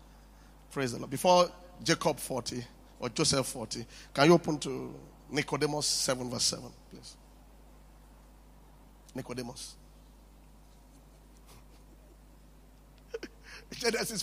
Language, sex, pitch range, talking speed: English, male, 190-310 Hz, 85 wpm